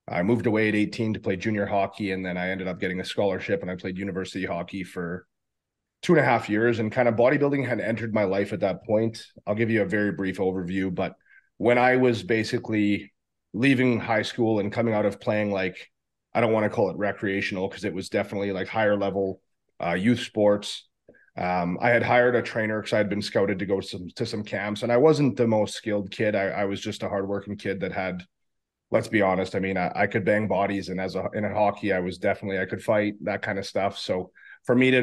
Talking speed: 240 wpm